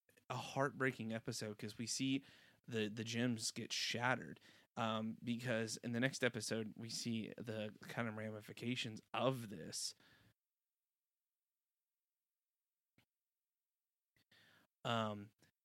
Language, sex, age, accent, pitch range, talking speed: English, male, 20-39, American, 110-130 Hz, 100 wpm